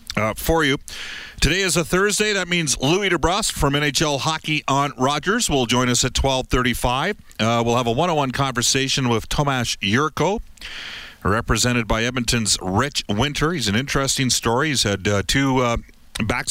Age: 50-69